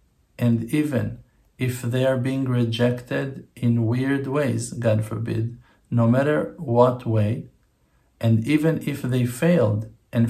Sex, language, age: male, English, 50-69